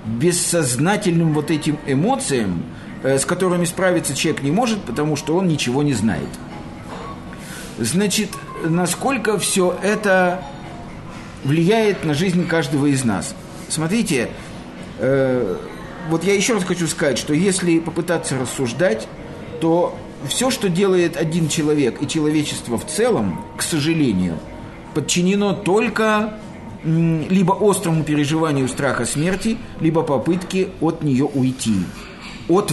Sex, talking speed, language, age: male, 115 wpm, Russian, 50-69